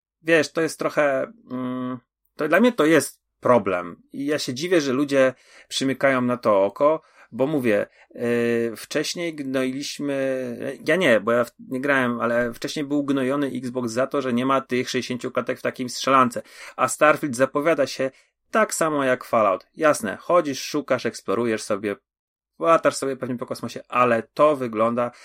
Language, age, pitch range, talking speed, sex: Polish, 30-49, 120-145 Hz, 155 wpm, male